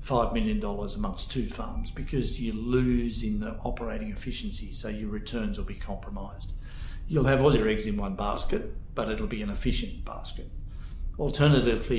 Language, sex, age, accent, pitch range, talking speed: English, male, 50-69, Australian, 100-120 Hz, 170 wpm